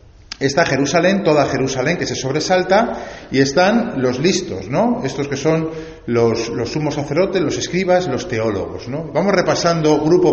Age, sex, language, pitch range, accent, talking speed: 40-59, male, Spanish, 130-185 Hz, Spanish, 155 wpm